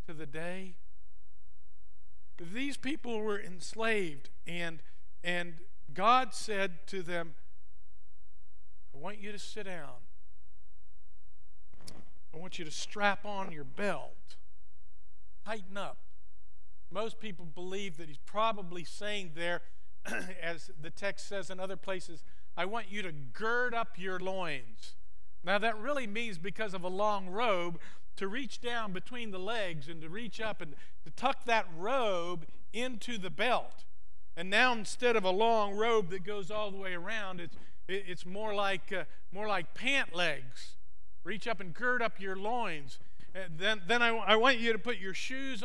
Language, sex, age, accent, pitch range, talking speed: English, male, 50-69, American, 135-220 Hz, 150 wpm